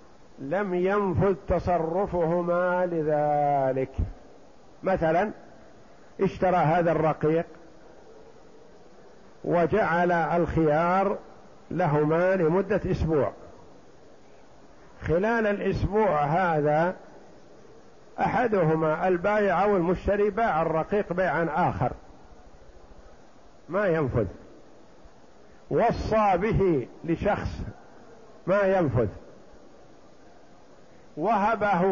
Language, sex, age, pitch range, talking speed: Arabic, male, 50-69, 155-200 Hz, 60 wpm